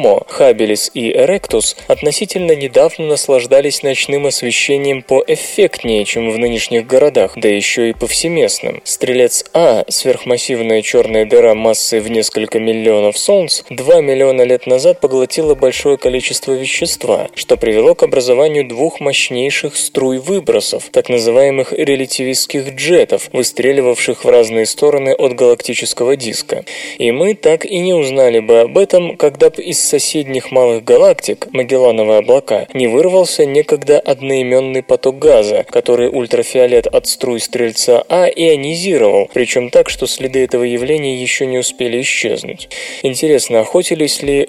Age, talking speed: 20-39, 130 wpm